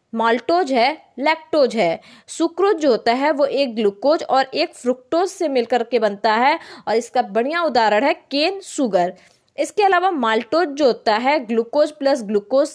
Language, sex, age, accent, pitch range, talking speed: Hindi, female, 20-39, native, 220-315 Hz, 165 wpm